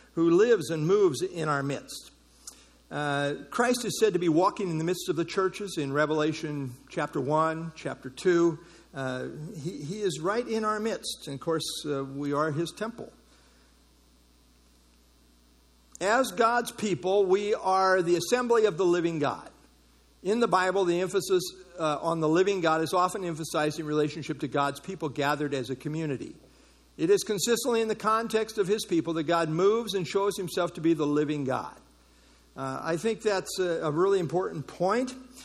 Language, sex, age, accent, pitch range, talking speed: English, male, 50-69, American, 140-200 Hz, 175 wpm